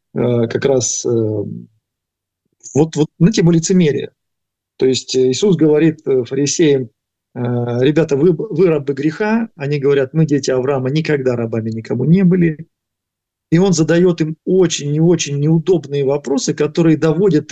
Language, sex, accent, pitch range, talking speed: Russian, male, native, 130-175 Hz, 130 wpm